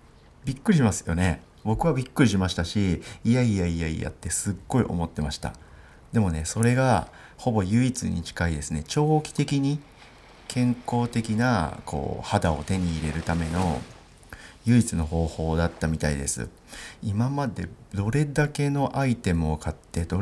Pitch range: 85-115 Hz